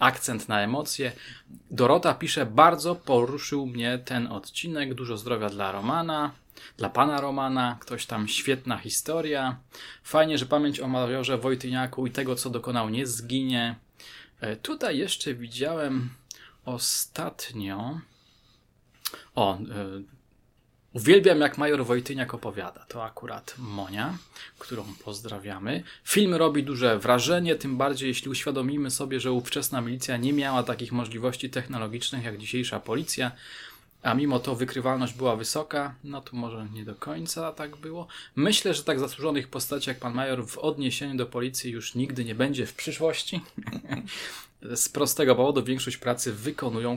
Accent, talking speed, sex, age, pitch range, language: native, 135 wpm, male, 20-39, 120-140 Hz, Polish